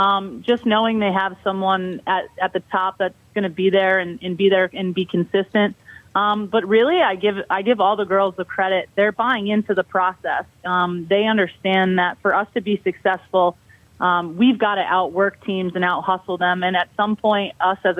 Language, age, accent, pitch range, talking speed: English, 30-49, American, 185-205 Hz, 215 wpm